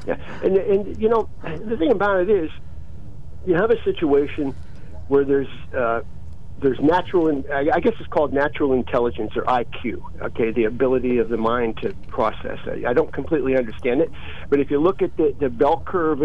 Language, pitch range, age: English, 120-150 Hz, 50-69